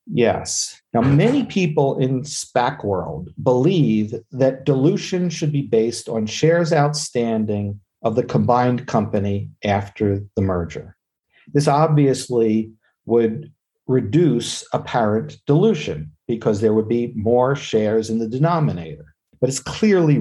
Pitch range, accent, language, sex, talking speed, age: 115-155 Hz, American, English, male, 120 wpm, 50-69